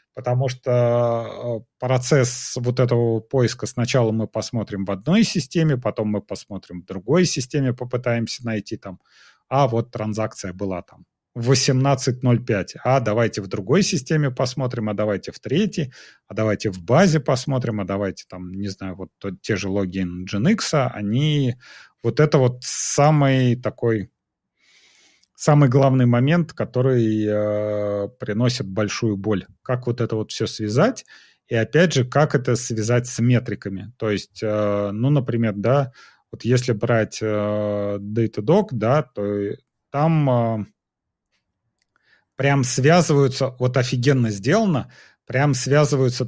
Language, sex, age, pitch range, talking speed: Russian, male, 30-49, 105-135 Hz, 130 wpm